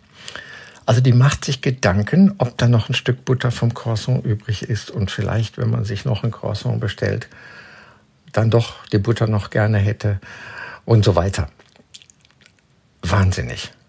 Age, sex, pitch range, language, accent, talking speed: 50-69, male, 110-135 Hz, German, German, 150 wpm